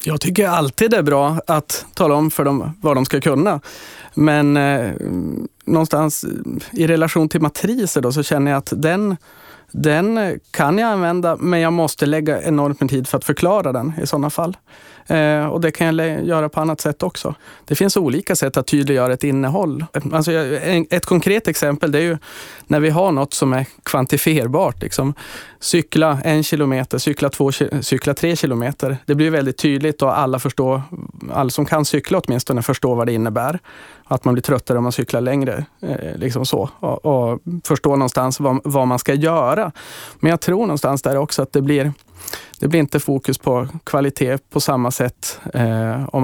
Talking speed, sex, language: 190 wpm, male, Swedish